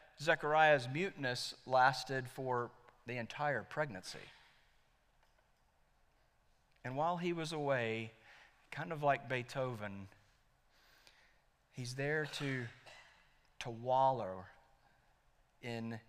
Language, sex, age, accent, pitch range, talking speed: English, male, 40-59, American, 115-155 Hz, 80 wpm